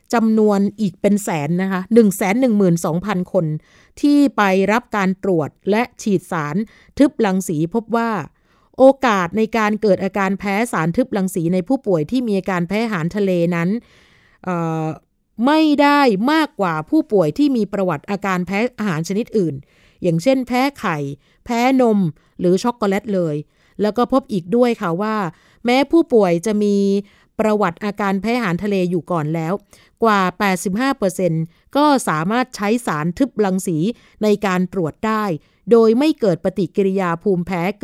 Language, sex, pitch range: Thai, female, 180-235 Hz